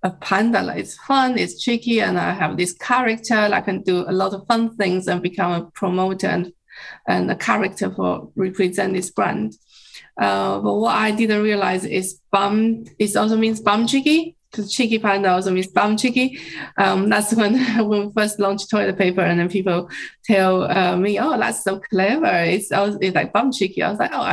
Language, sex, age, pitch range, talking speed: English, female, 20-39, 185-230 Hz, 200 wpm